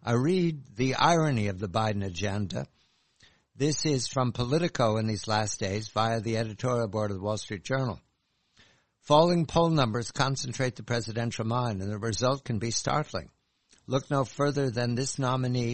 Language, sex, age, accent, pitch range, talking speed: English, male, 60-79, American, 110-145 Hz, 170 wpm